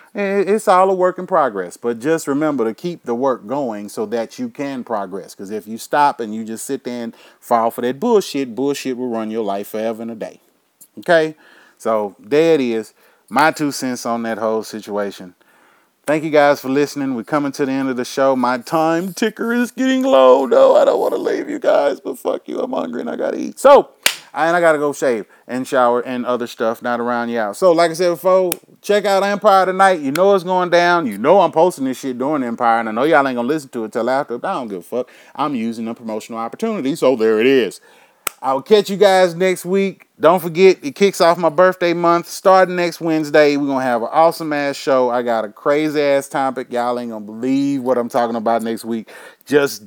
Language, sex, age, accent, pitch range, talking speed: English, male, 30-49, American, 120-175 Hz, 235 wpm